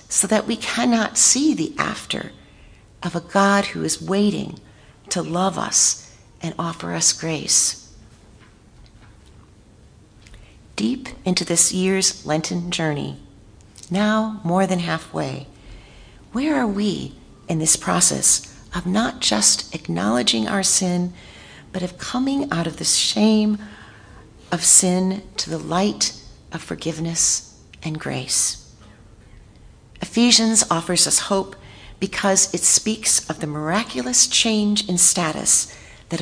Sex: female